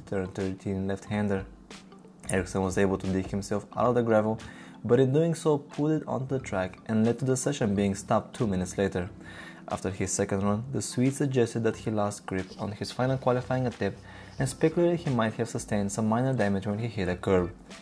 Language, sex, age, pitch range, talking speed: English, male, 20-39, 100-120 Hz, 210 wpm